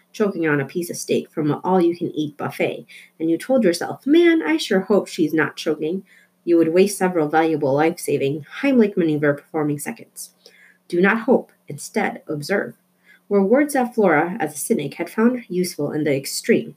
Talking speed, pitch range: 170 wpm, 160-210 Hz